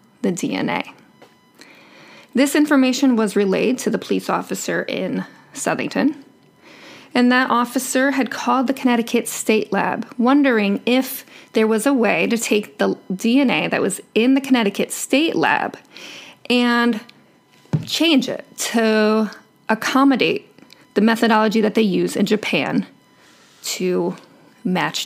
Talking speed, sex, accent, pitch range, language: 125 wpm, female, American, 215-260 Hz, English